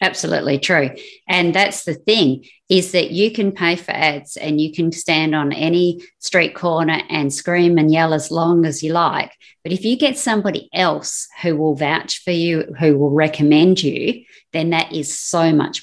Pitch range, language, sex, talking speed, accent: 150-185 Hz, English, female, 190 wpm, Australian